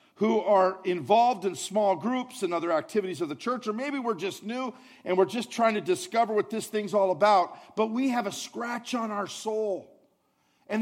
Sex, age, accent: male, 50-69, American